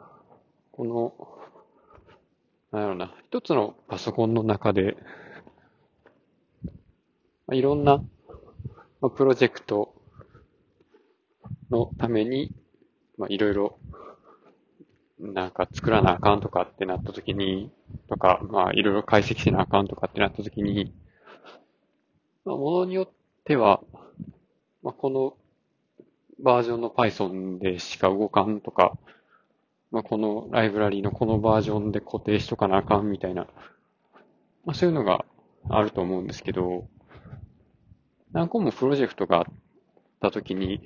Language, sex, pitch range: Japanese, male, 100-125 Hz